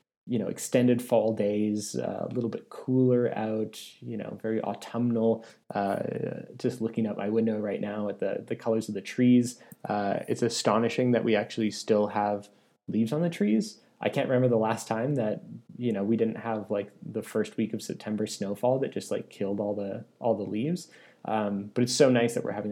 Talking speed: 205 wpm